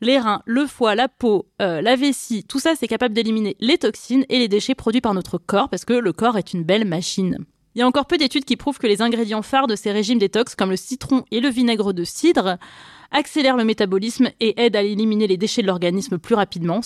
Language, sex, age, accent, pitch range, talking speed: French, female, 20-39, French, 195-245 Hz, 240 wpm